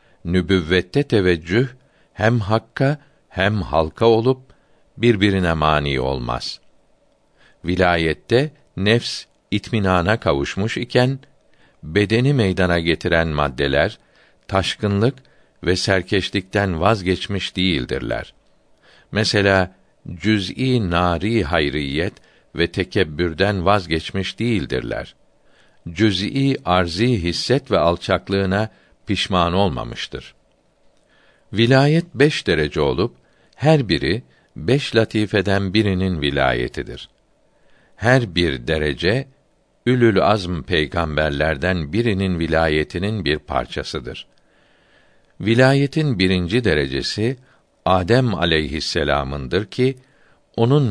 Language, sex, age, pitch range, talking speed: Turkish, male, 60-79, 85-120 Hz, 80 wpm